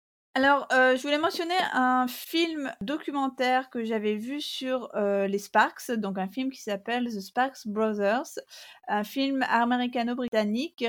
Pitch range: 205-260 Hz